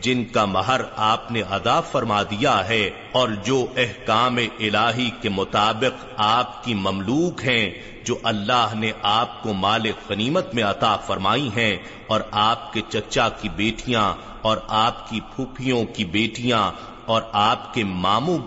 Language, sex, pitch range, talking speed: Urdu, male, 105-125 Hz, 150 wpm